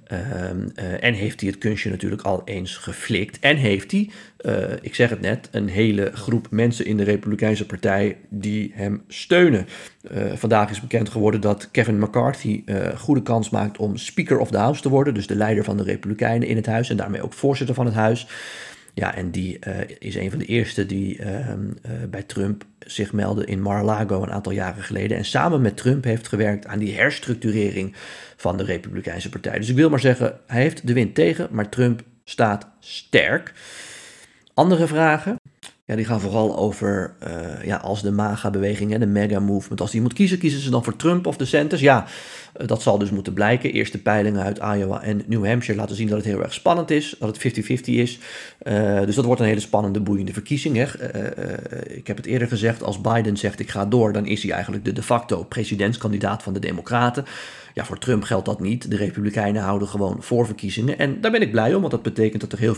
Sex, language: male, Dutch